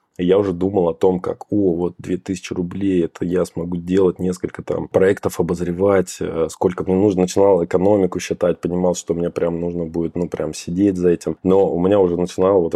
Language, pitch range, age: Russian, 85-100 Hz, 20-39